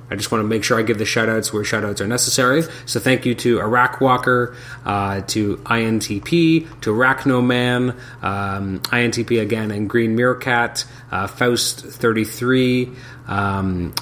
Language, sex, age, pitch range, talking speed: English, male, 30-49, 100-125 Hz, 155 wpm